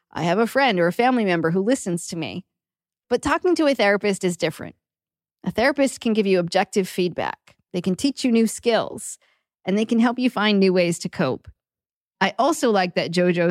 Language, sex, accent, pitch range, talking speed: English, female, American, 175-220 Hz, 210 wpm